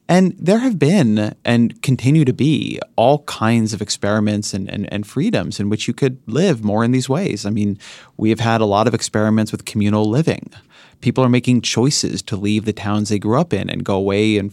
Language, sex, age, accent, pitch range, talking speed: English, male, 30-49, American, 105-140 Hz, 220 wpm